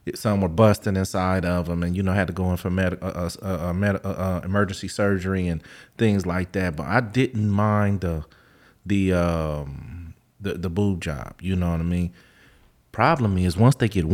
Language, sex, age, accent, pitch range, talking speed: English, male, 30-49, American, 90-110 Hz, 195 wpm